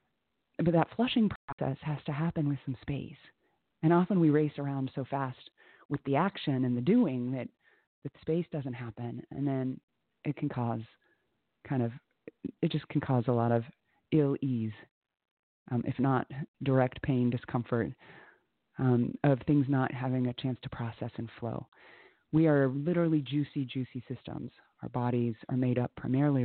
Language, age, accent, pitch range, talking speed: English, 30-49, American, 120-145 Hz, 165 wpm